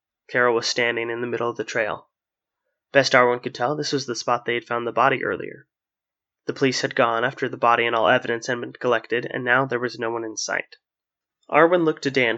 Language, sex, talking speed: English, male, 235 wpm